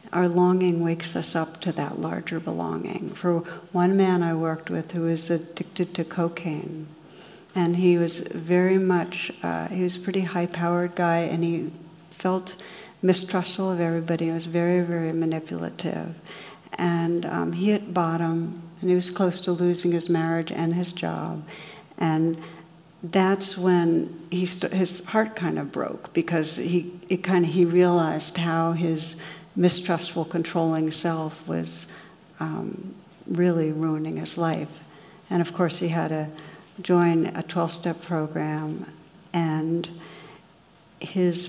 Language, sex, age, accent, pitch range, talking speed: English, female, 60-79, American, 165-180 Hz, 140 wpm